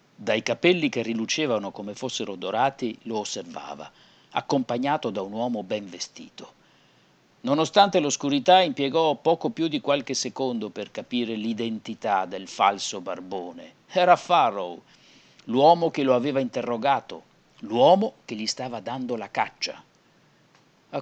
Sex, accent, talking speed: male, native, 125 wpm